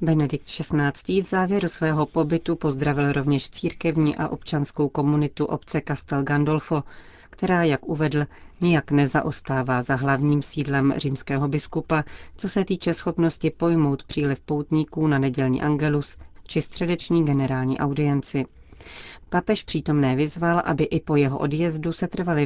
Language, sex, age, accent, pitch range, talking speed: Czech, female, 40-59, native, 140-165 Hz, 130 wpm